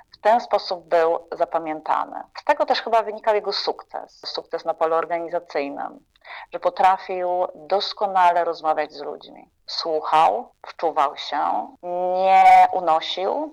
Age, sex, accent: 30-49, female, native